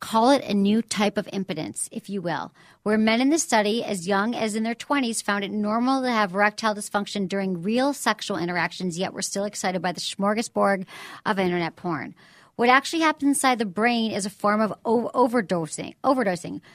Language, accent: English, American